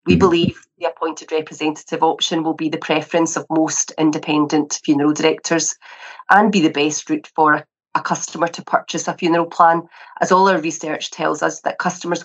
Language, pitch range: English, 155-175 Hz